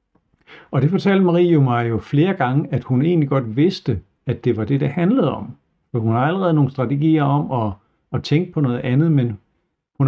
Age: 60-79